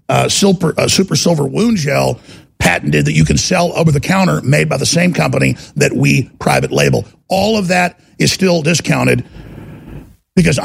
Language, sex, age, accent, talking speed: English, male, 50-69, American, 175 wpm